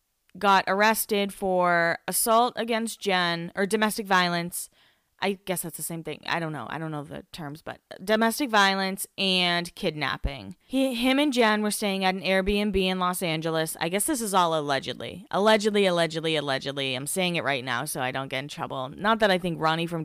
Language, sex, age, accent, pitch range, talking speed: English, female, 20-39, American, 175-215 Hz, 200 wpm